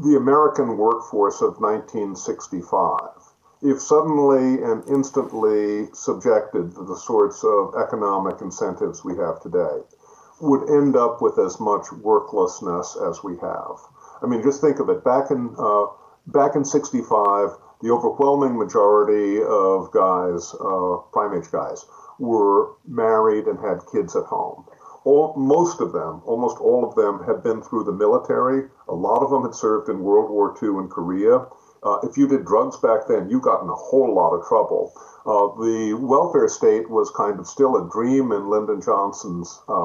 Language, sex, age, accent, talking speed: English, male, 50-69, American, 165 wpm